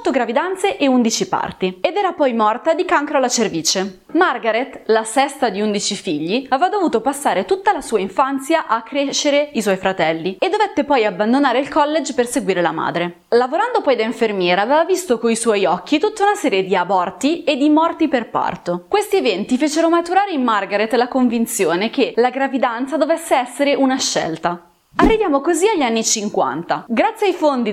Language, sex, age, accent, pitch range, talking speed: Italian, female, 20-39, native, 215-315 Hz, 175 wpm